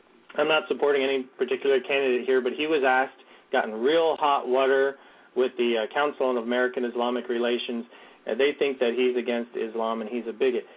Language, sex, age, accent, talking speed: English, male, 30-49, American, 205 wpm